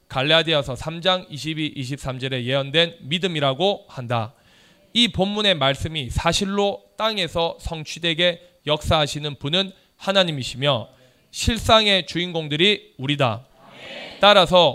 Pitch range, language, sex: 150-195 Hz, Korean, male